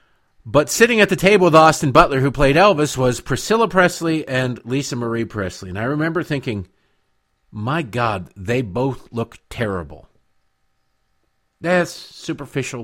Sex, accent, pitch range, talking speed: male, American, 95-135 Hz, 140 wpm